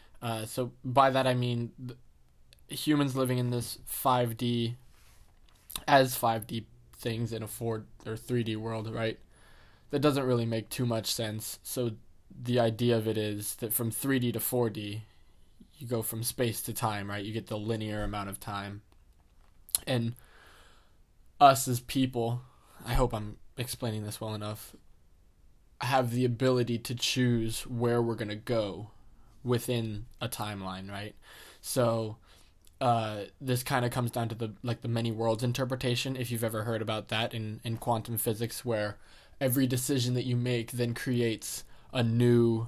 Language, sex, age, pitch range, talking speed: English, male, 20-39, 110-125 Hz, 155 wpm